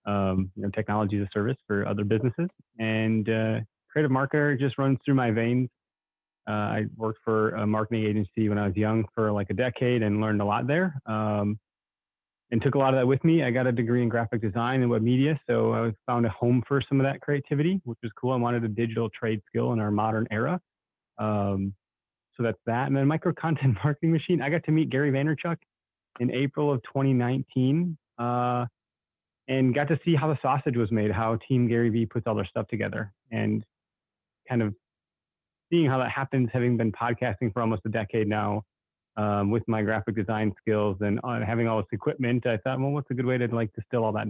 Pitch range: 105-130 Hz